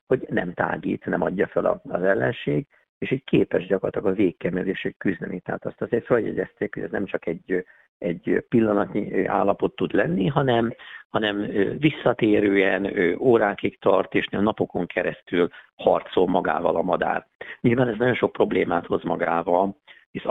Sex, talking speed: male, 150 wpm